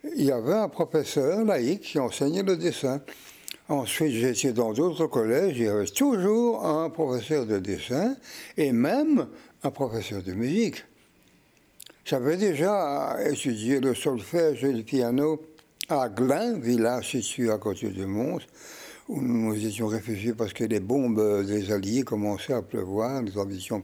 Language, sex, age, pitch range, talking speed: French, male, 60-79, 110-160 Hz, 155 wpm